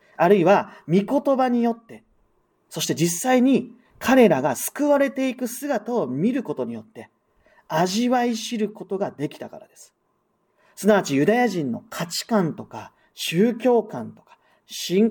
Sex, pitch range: male, 200-250 Hz